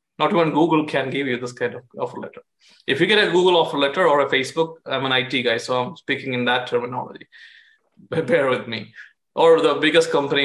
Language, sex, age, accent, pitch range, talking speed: English, male, 20-39, Indian, 130-190 Hz, 220 wpm